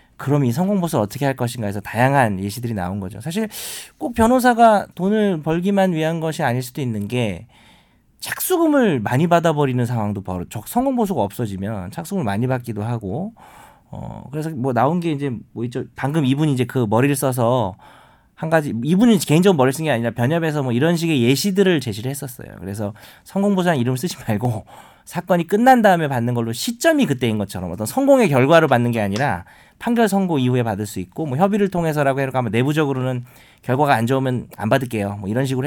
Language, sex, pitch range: Korean, male, 115-170 Hz